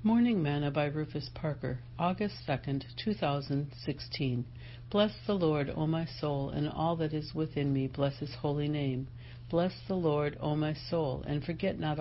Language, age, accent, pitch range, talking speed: English, 60-79, American, 120-165 Hz, 165 wpm